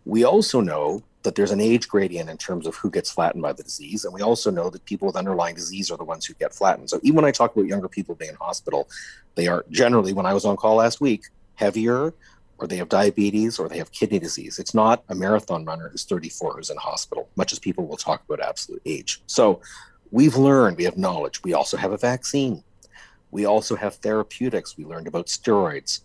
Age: 40-59